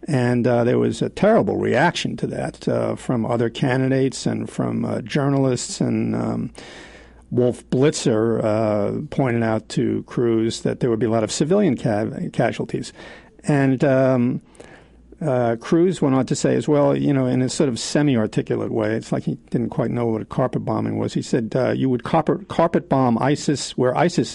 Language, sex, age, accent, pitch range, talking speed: English, male, 50-69, American, 115-145 Hz, 185 wpm